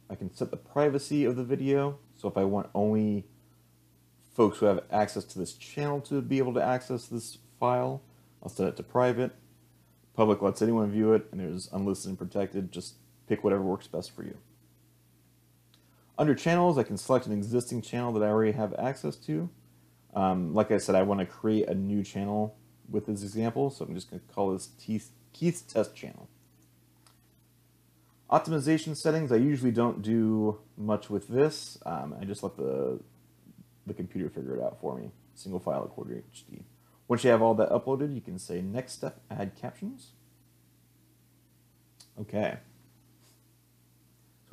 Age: 30-49